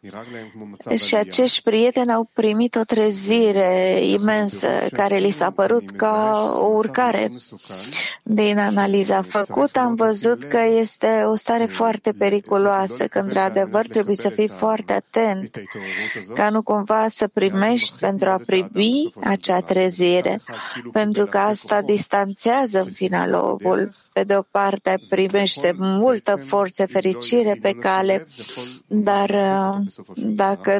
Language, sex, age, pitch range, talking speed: English, female, 30-49, 195-220 Hz, 115 wpm